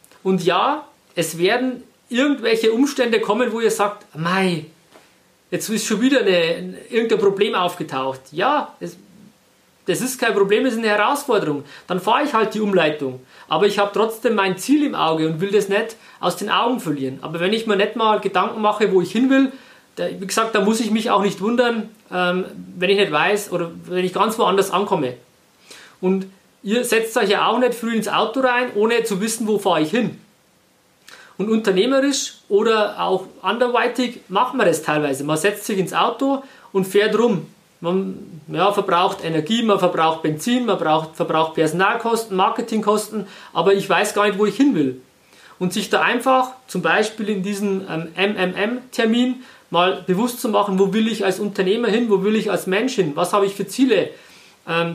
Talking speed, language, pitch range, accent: 180 wpm, German, 180-230 Hz, German